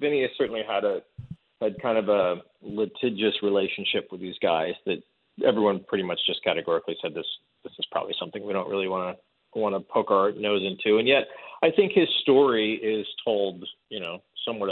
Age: 40-59